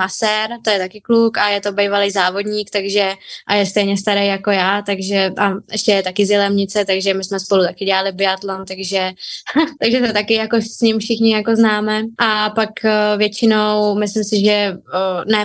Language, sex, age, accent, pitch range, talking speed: Czech, female, 20-39, native, 195-210 Hz, 185 wpm